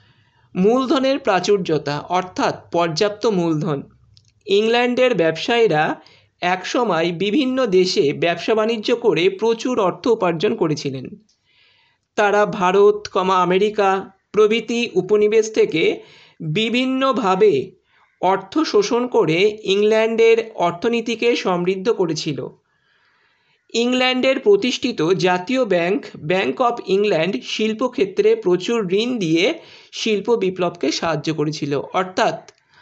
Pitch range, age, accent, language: 175-245 Hz, 50-69, native, Bengali